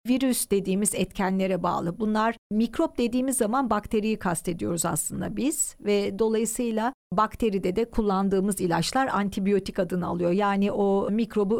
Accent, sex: native, female